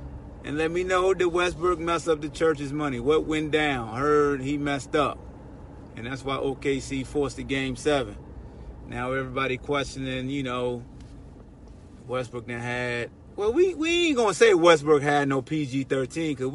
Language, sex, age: English, male, 30-49